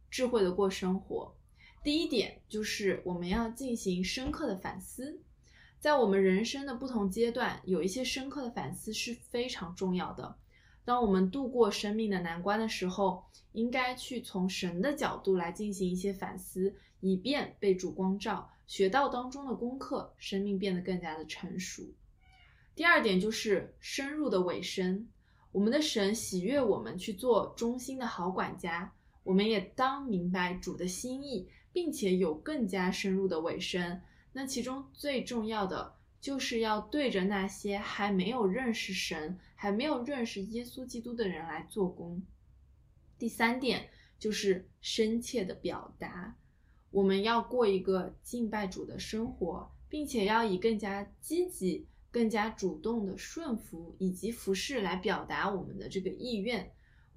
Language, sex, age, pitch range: Chinese, female, 20-39, 190-245 Hz